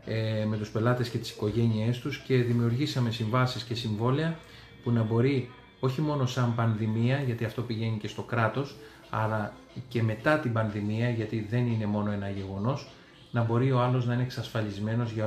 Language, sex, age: Greek, male, 30-49